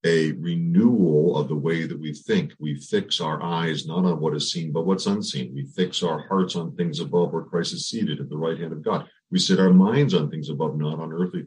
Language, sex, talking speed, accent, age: English, male, 245 wpm, American, 50-69